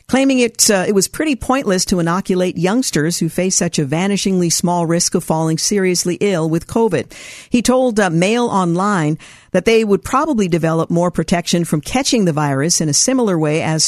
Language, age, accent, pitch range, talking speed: English, 50-69, American, 160-205 Hz, 190 wpm